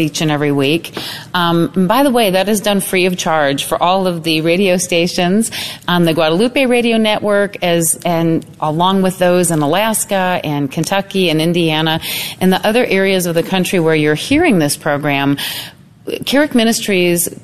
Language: English